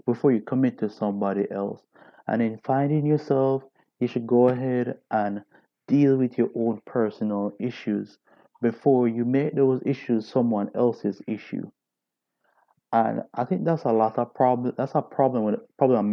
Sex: male